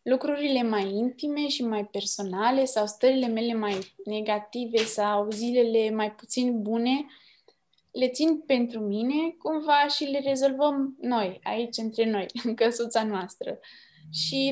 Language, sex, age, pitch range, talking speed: Romanian, female, 20-39, 205-270 Hz, 130 wpm